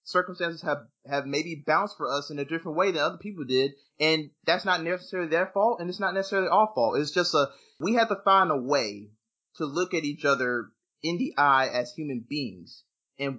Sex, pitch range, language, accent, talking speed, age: male, 135-175 Hz, English, American, 215 wpm, 20-39